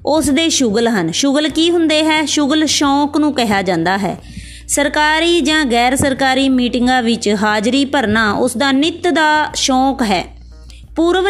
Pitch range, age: 230-300 Hz, 20-39